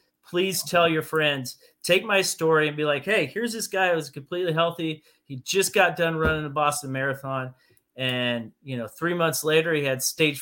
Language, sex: English, male